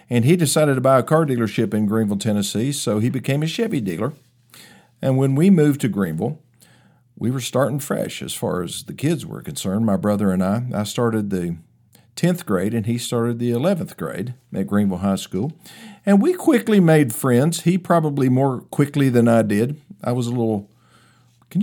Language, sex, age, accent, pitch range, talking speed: English, male, 50-69, American, 115-160 Hz, 190 wpm